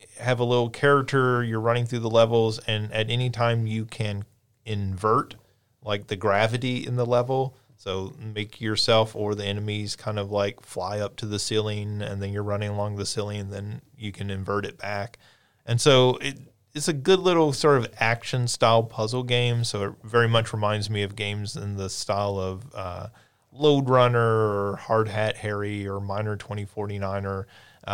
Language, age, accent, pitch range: English, 30-49, American, 105-125 Hz